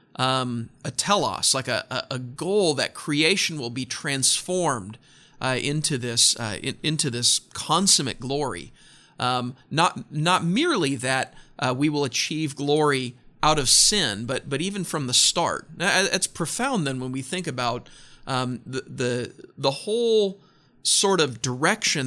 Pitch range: 125-155 Hz